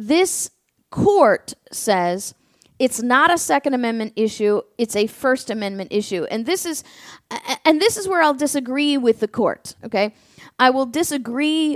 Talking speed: 160 wpm